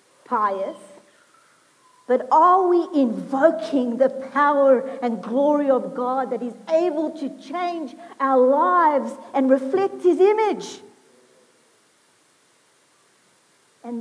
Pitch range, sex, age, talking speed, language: 205-275 Hz, female, 50-69, 100 wpm, English